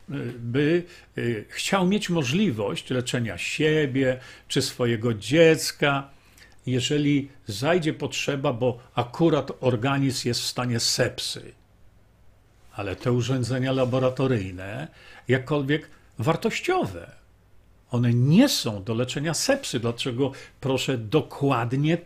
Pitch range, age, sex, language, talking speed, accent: 120-165 Hz, 50-69, male, Polish, 90 wpm, native